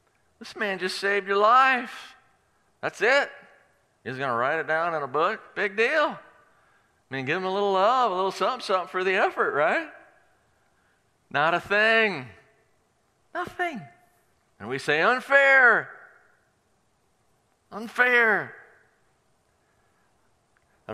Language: English